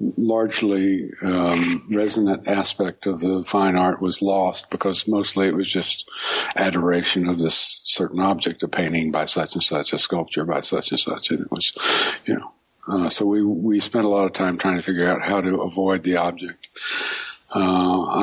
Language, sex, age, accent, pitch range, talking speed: English, male, 60-79, American, 85-95 Hz, 185 wpm